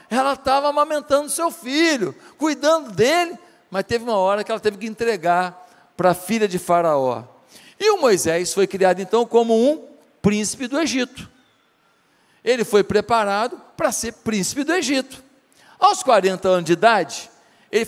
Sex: male